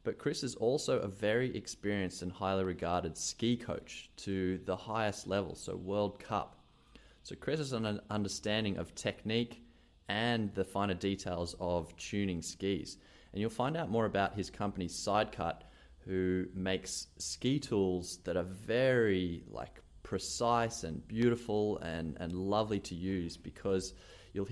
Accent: Australian